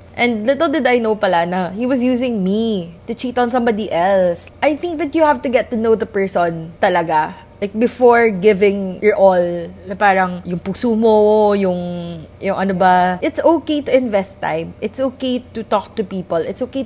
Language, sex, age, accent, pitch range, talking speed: Filipino, female, 20-39, native, 180-255 Hz, 190 wpm